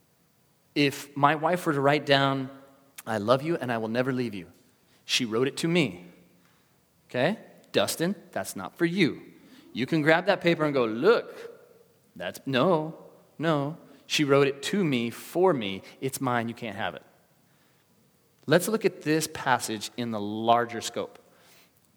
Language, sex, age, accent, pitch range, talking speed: English, male, 30-49, American, 115-160 Hz, 165 wpm